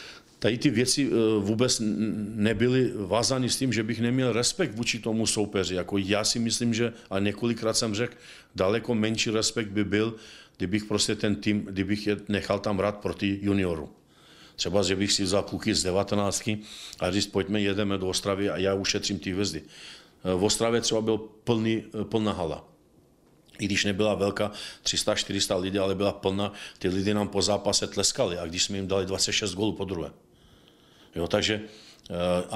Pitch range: 95-105 Hz